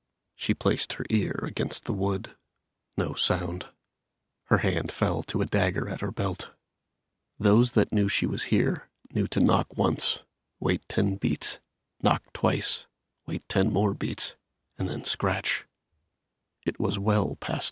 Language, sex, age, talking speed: English, male, 40-59, 150 wpm